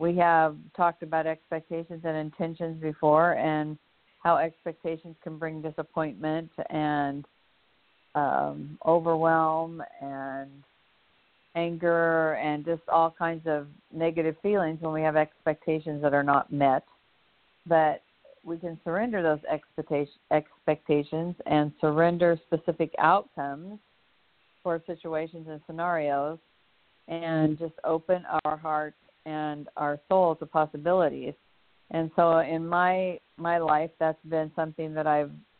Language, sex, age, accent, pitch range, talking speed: English, female, 50-69, American, 150-170 Hz, 115 wpm